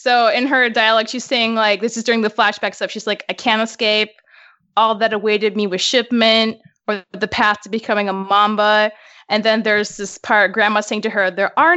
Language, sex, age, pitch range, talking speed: English, female, 20-39, 210-245 Hz, 215 wpm